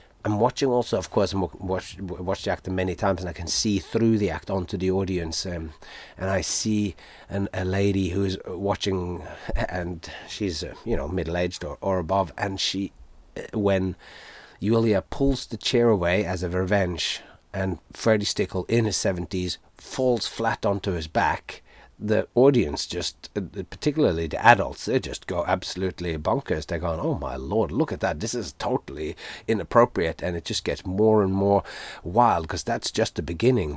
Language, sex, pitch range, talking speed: English, male, 90-105 Hz, 175 wpm